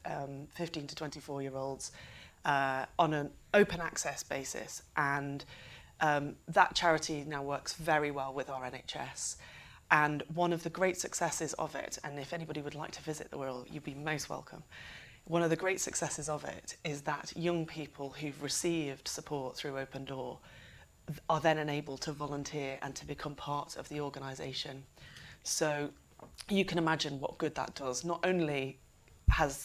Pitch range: 140-165 Hz